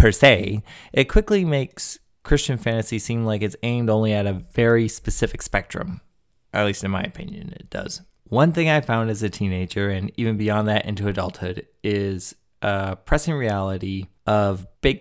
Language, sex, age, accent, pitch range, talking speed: English, male, 20-39, American, 95-110 Hz, 170 wpm